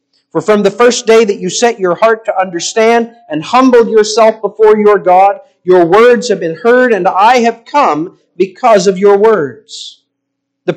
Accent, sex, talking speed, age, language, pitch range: American, male, 180 wpm, 50-69, English, 180-245 Hz